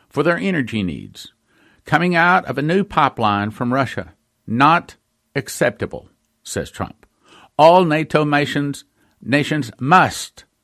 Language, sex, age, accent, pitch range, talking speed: English, male, 60-79, American, 120-155 Hz, 120 wpm